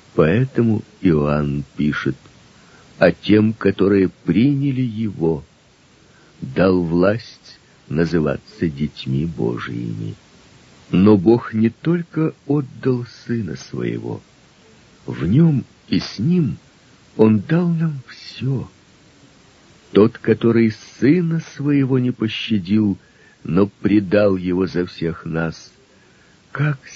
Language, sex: Russian, male